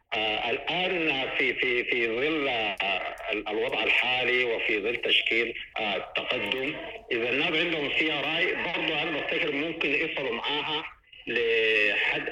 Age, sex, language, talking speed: 60-79, male, English, 105 wpm